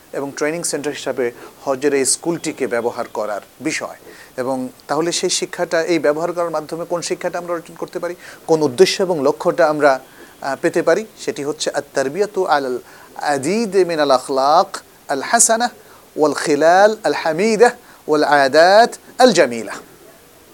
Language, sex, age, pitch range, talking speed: Bengali, male, 40-59, 145-205 Hz, 110 wpm